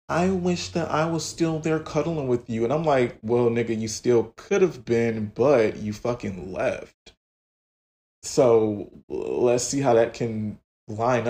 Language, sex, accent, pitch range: English, male, American, 105-120 Hz